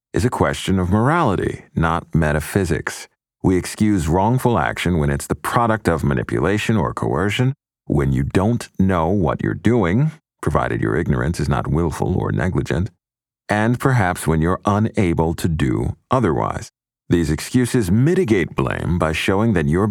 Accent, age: American, 50-69